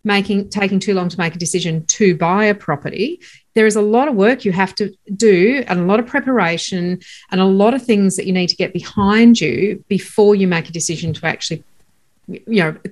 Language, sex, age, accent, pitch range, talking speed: English, female, 40-59, Australian, 165-210 Hz, 225 wpm